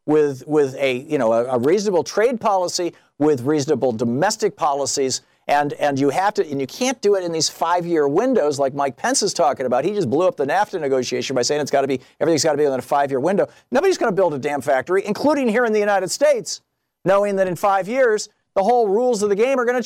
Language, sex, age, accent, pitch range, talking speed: English, male, 50-69, American, 115-180 Hz, 250 wpm